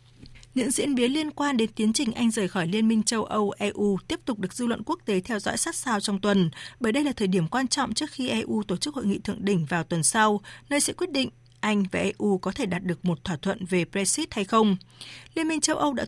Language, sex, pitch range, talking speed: Vietnamese, female, 190-250 Hz, 260 wpm